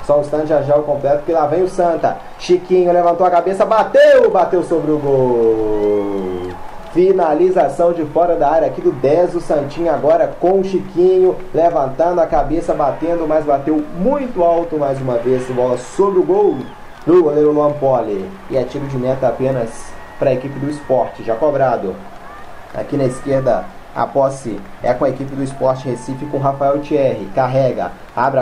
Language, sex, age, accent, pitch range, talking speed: Portuguese, male, 20-39, Brazilian, 130-150 Hz, 175 wpm